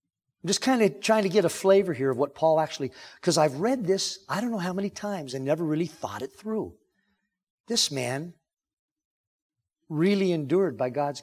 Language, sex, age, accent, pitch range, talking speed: English, male, 50-69, American, 140-195 Hz, 190 wpm